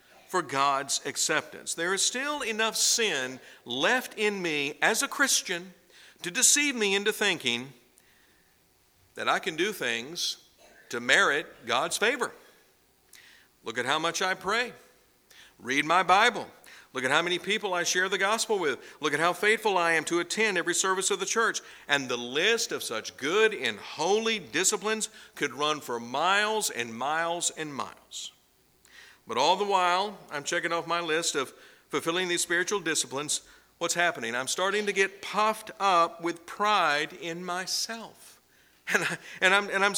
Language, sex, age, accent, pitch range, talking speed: English, male, 50-69, American, 165-210 Hz, 160 wpm